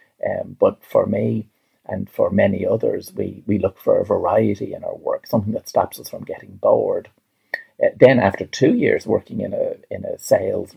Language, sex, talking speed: English, male, 195 wpm